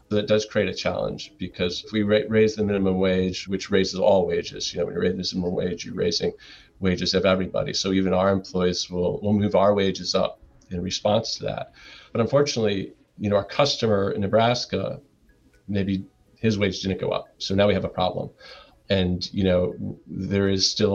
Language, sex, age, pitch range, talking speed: English, male, 40-59, 95-105 Hz, 200 wpm